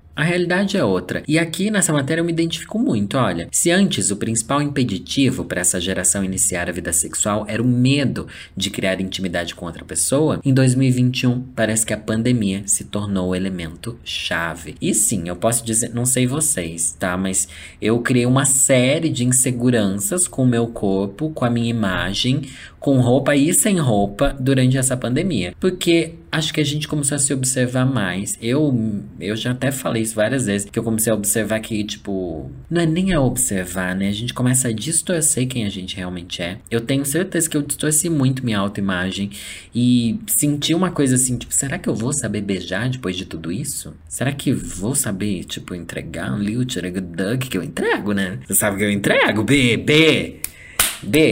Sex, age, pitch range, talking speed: male, 20-39, 95-140 Hz, 190 wpm